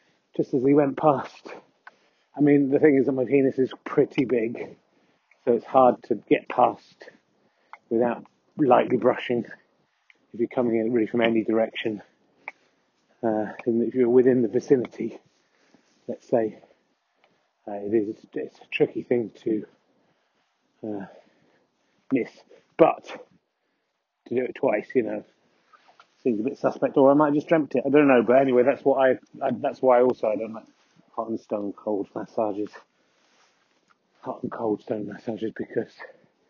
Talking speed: 150 wpm